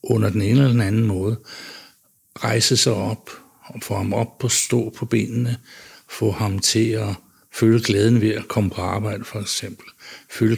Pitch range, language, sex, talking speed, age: 105-125 Hz, Danish, male, 180 wpm, 60-79